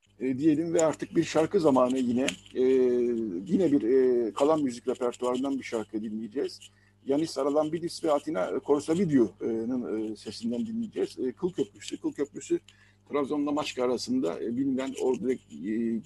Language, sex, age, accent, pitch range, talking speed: Turkish, male, 60-79, native, 110-140 Hz, 145 wpm